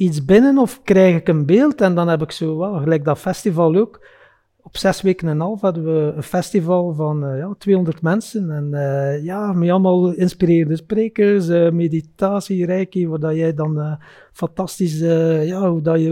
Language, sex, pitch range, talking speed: Dutch, male, 160-200 Hz, 195 wpm